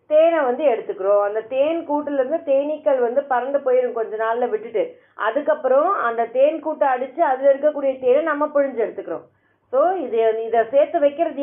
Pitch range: 245-320 Hz